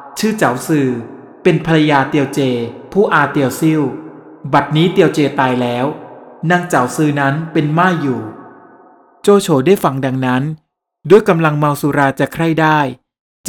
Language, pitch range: Thai, 140-175 Hz